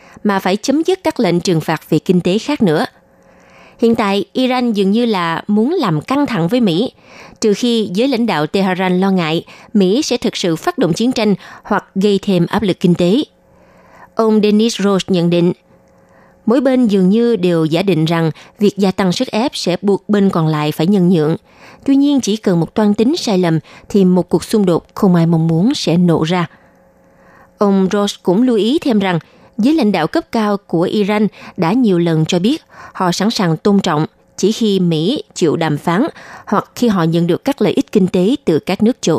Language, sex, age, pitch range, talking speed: Vietnamese, female, 20-39, 170-225 Hz, 215 wpm